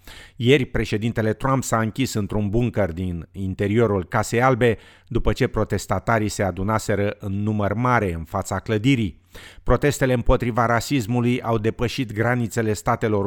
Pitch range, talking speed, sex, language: 100-120 Hz, 130 wpm, male, Romanian